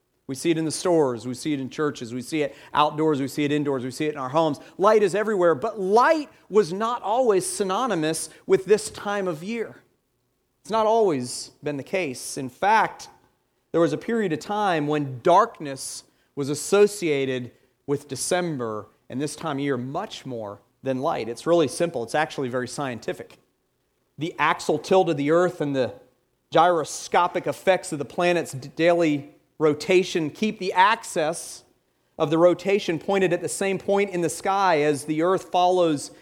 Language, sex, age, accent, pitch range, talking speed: English, male, 40-59, American, 140-185 Hz, 180 wpm